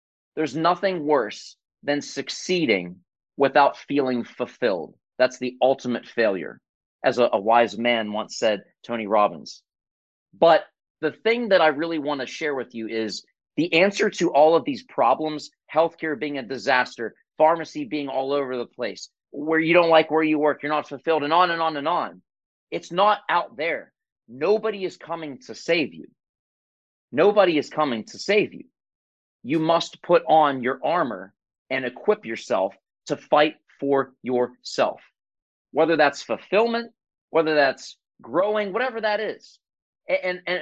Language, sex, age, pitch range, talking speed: English, male, 30-49, 130-190 Hz, 155 wpm